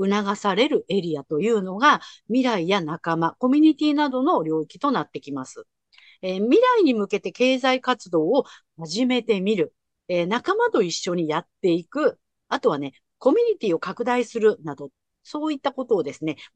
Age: 50-69